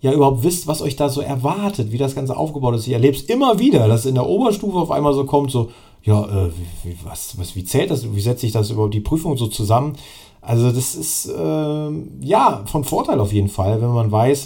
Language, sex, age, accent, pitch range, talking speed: German, male, 40-59, German, 105-135 Hz, 240 wpm